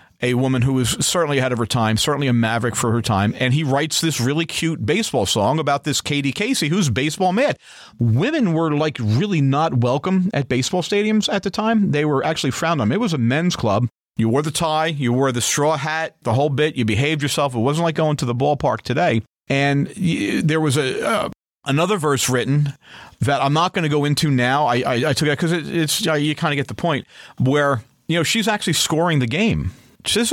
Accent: American